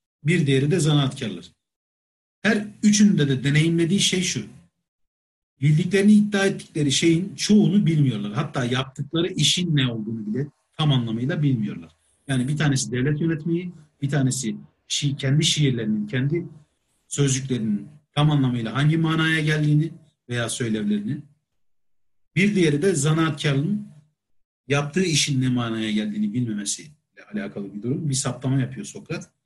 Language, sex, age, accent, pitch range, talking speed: Turkish, male, 50-69, native, 125-165 Hz, 125 wpm